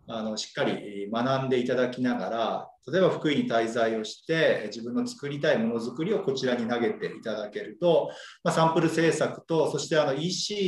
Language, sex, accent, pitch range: Japanese, male, native, 120-170 Hz